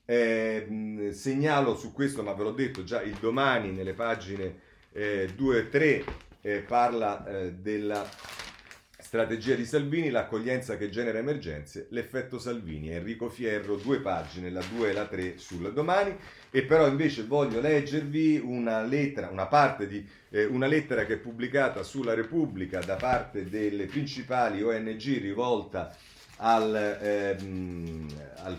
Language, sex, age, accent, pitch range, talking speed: Italian, male, 40-59, native, 95-125 Hz, 140 wpm